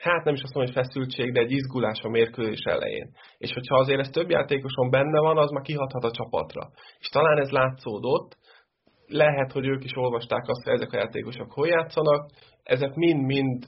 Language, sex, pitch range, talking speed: Hungarian, male, 125-150 Hz, 195 wpm